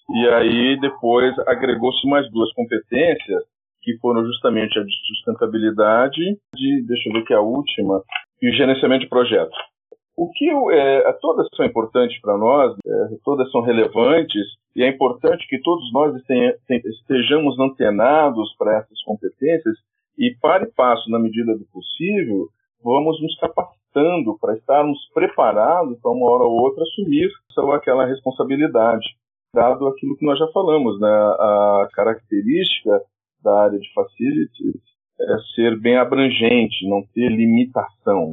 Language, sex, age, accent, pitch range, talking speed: Portuguese, male, 40-59, Brazilian, 110-160 Hz, 140 wpm